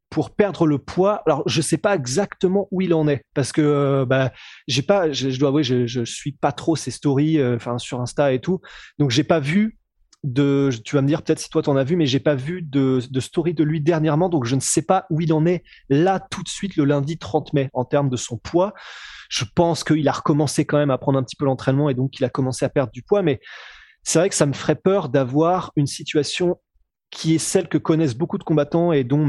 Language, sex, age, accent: French, male, 20-39, French